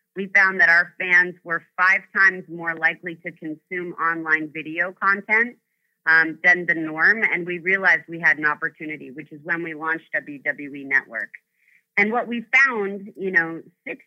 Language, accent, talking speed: English, American, 170 wpm